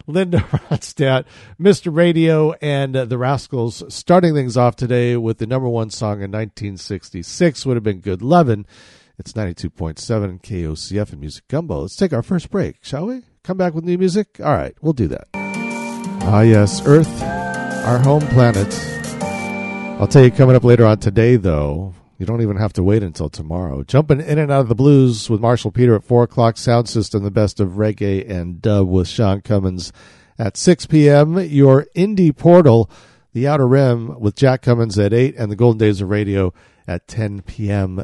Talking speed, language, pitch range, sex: 185 wpm, English, 100-145 Hz, male